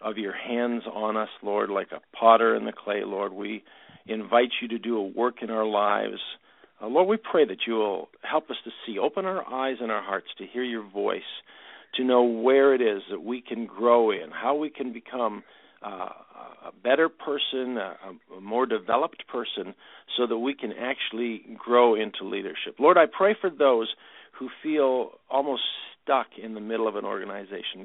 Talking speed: 190 wpm